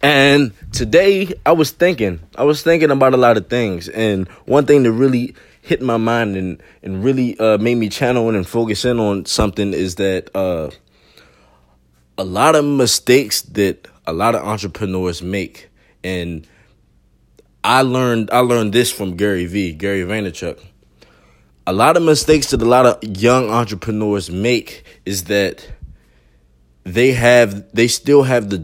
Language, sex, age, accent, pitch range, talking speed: English, male, 20-39, American, 95-125 Hz, 160 wpm